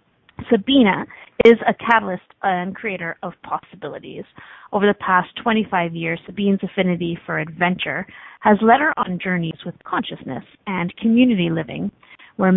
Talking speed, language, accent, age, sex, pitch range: 135 wpm, English, American, 30-49, female, 175-210 Hz